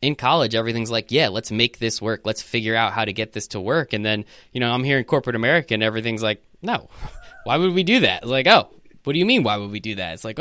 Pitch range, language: 110-135 Hz, English